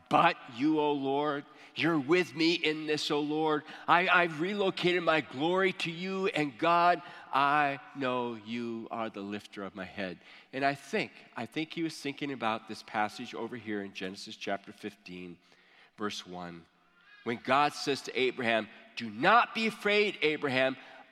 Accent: American